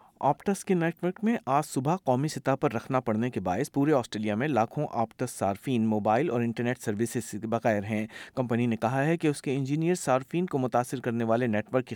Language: Urdu